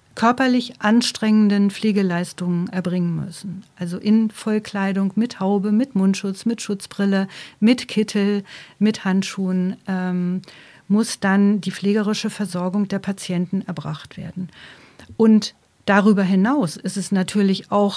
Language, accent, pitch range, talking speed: German, German, 175-205 Hz, 115 wpm